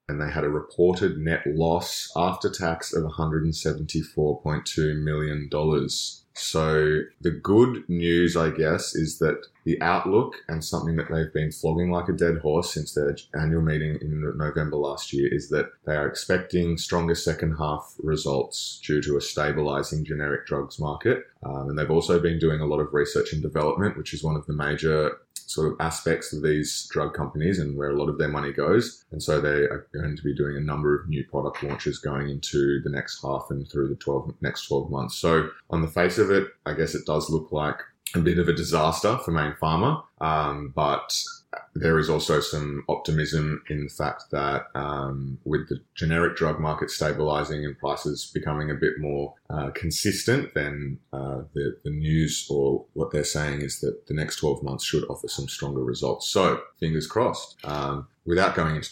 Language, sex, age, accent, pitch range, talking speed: English, male, 20-39, Australian, 75-80 Hz, 190 wpm